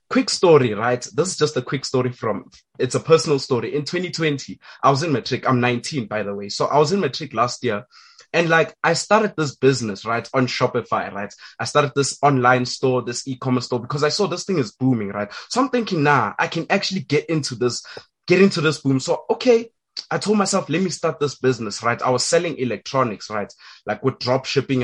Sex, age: male, 20-39